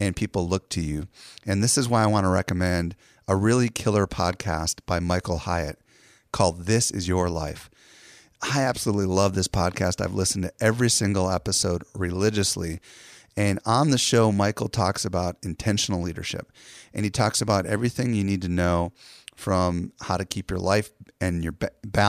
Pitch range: 90-110 Hz